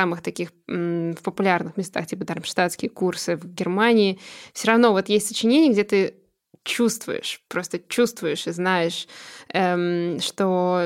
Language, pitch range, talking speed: Russian, 180-205 Hz, 140 wpm